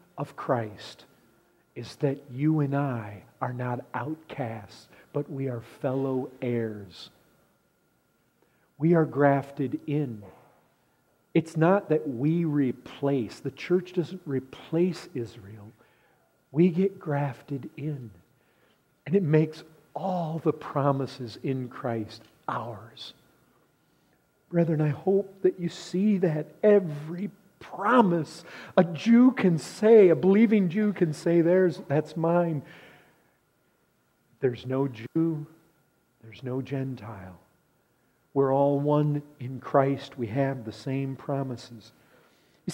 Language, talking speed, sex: English, 110 wpm, male